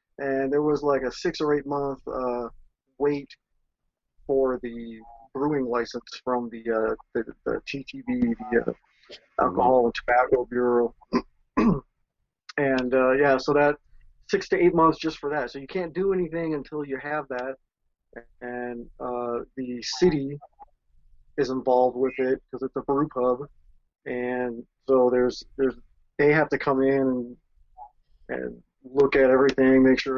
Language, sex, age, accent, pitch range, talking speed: English, male, 30-49, American, 125-140 Hz, 155 wpm